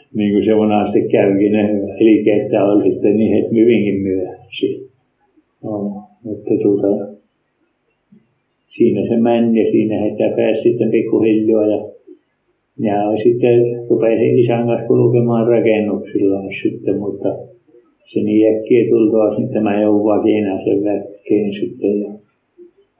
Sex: male